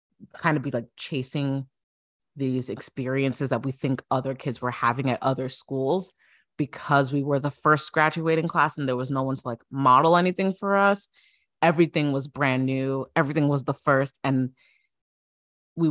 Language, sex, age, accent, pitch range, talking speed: English, female, 20-39, American, 130-160 Hz, 170 wpm